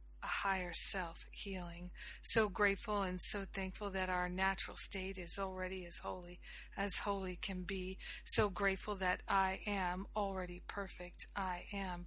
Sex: female